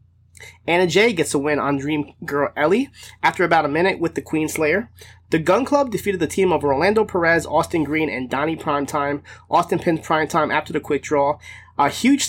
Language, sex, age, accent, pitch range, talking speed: English, male, 20-39, American, 130-170 Hz, 195 wpm